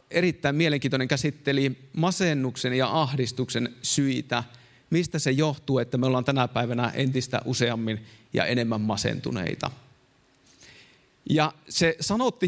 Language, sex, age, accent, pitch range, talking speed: Finnish, male, 30-49, native, 125-145 Hz, 110 wpm